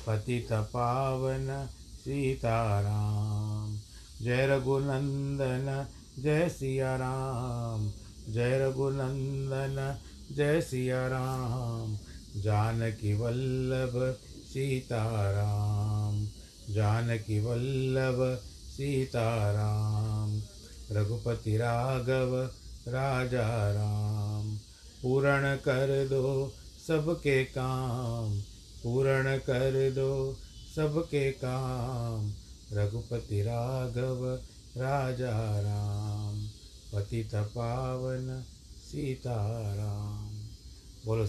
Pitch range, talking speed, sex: 105-130 Hz, 60 wpm, male